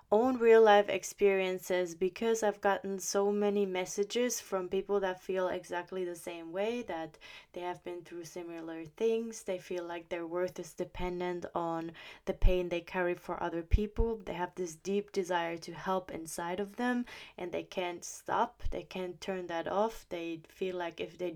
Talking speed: 180 wpm